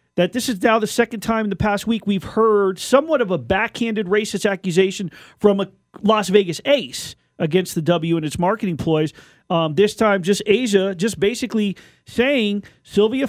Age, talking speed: 40-59, 180 wpm